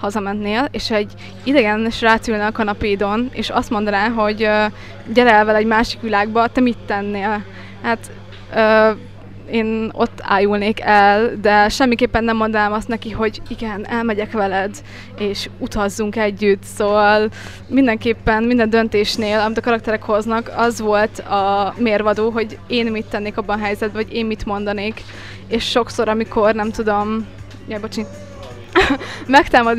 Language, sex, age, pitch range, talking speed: Hungarian, female, 20-39, 210-230 Hz, 145 wpm